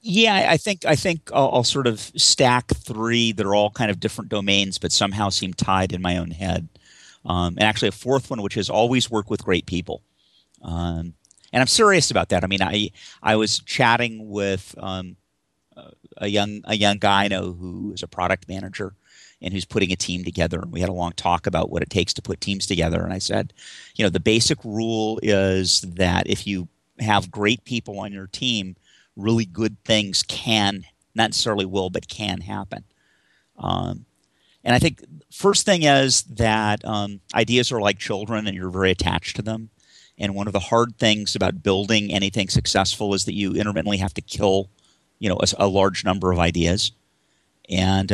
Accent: American